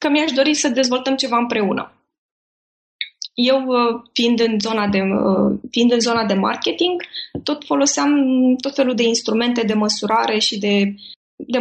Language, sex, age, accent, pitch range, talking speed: Romanian, female, 20-39, native, 215-260 Hz, 145 wpm